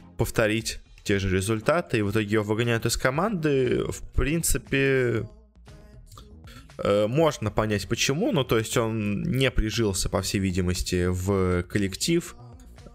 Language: Russian